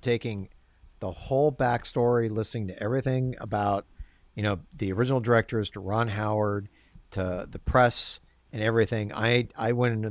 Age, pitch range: 50-69, 100-130 Hz